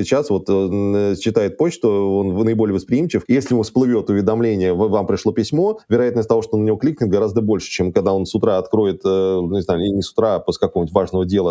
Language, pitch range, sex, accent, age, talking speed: Russian, 95-115 Hz, male, native, 20-39, 205 wpm